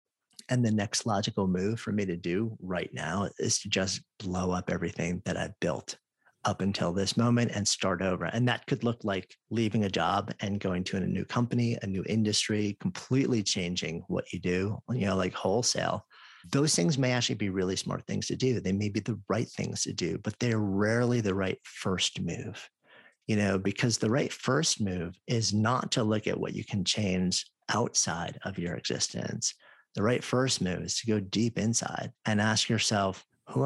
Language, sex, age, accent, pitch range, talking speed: English, male, 40-59, American, 95-115 Hz, 200 wpm